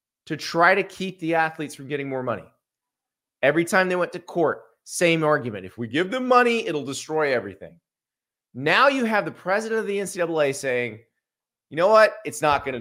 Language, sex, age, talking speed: English, male, 30-49, 190 wpm